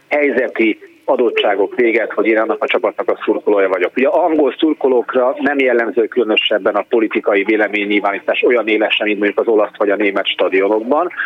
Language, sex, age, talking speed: Hungarian, male, 30-49, 165 wpm